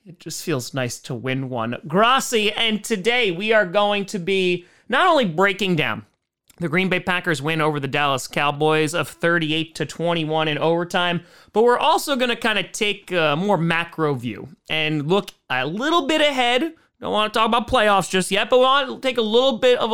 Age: 30-49